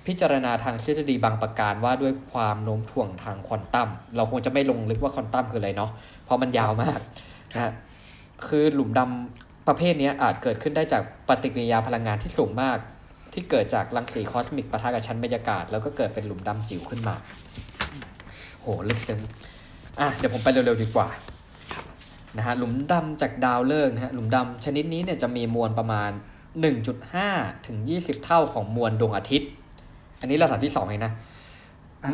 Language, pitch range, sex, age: Thai, 110-135 Hz, male, 20-39